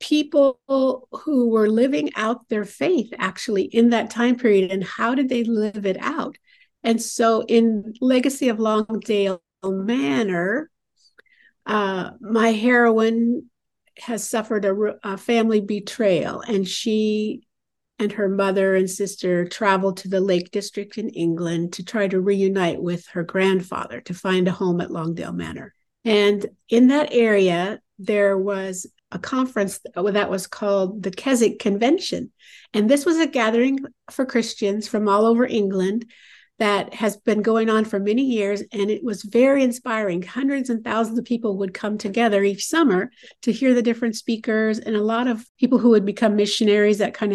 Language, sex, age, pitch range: English, female, 50-69, 200-245 Hz